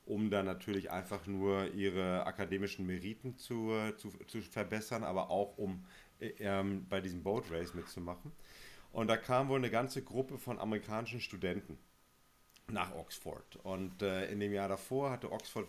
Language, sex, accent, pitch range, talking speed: German, male, German, 95-120 Hz, 160 wpm